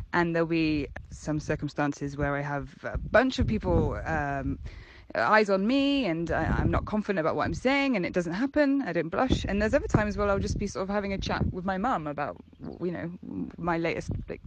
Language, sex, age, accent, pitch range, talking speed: English, female, 20-39, British, 150-205 Hz, 225 wpm